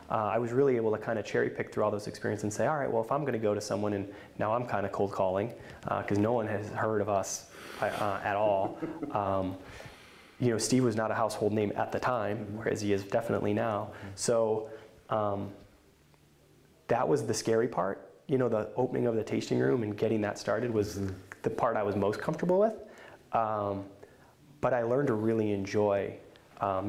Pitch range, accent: 100-115 Hz, American